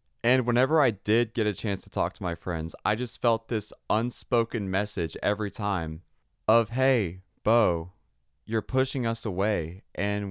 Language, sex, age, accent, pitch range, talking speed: English, male, 30-49, American, 95-120 Hz, 165 wpm